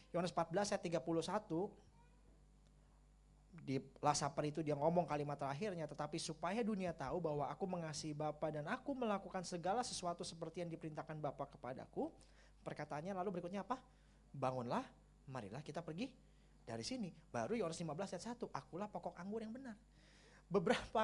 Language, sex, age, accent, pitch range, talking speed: Indonesian, male, 20-39, native, 165-215 Hz, 145 wpm